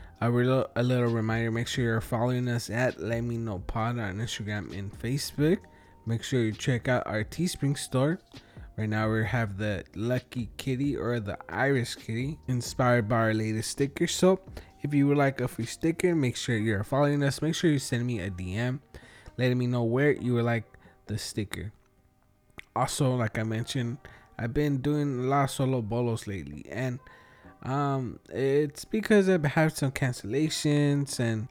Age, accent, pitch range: 20-39, American, 110-140 Hz